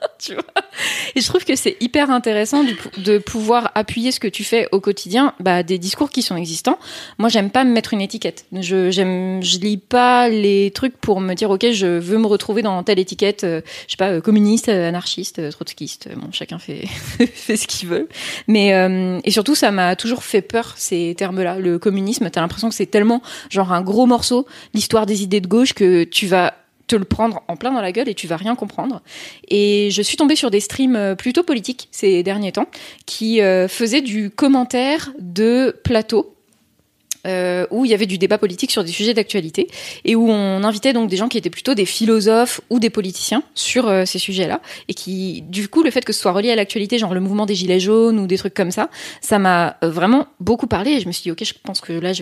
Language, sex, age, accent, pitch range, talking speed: French, female, 20-39, French, 185-235 Hz, 230 wpm